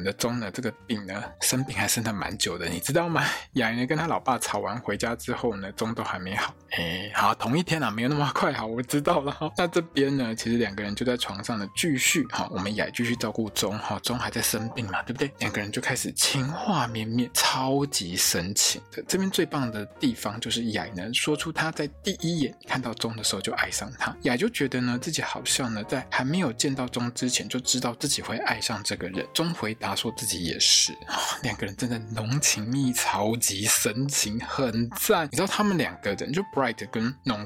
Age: 20-39